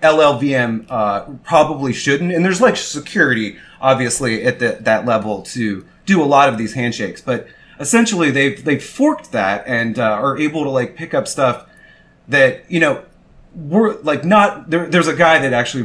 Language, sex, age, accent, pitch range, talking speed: English, male, 30-49, American, 120-155 Hz, 180 wpm